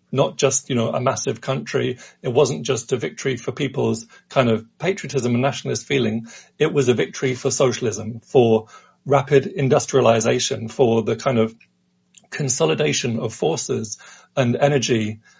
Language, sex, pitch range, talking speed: English, male, 115-140 Hz, 150 wpm